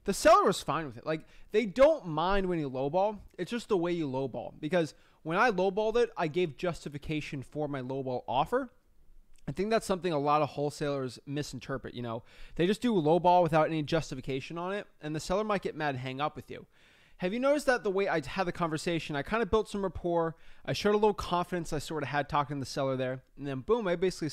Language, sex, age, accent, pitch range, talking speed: English, male, 20-39, American, 140-180 Hz, 240 wpm